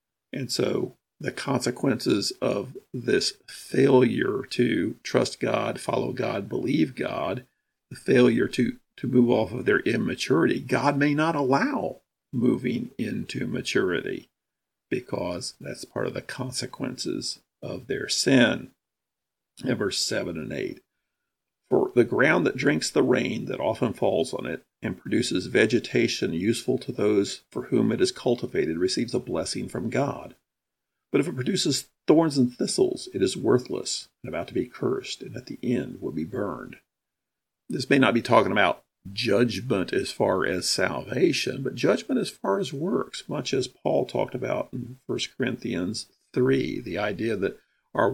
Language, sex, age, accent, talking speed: English, male, 50-69, American, 155 wpm